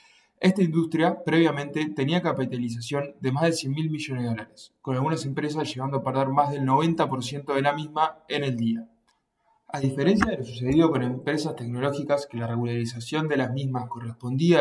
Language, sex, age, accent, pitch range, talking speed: English, male, 20-39, Argentinian, 125-155 Hz, 175 wpm